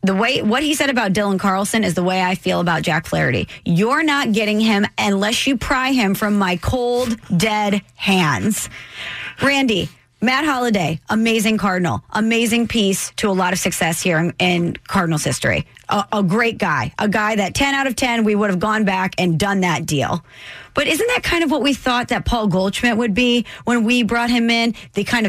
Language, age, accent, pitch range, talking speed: English, 30-49, American, 195-275 Hz, 205 wpm